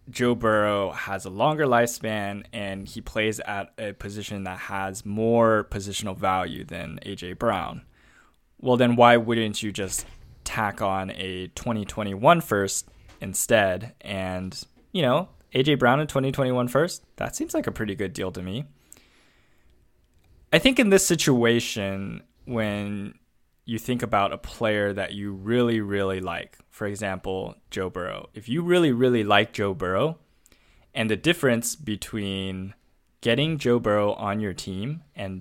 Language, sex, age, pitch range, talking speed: English, male, 20-39, 95-120 Hz, 145 wpm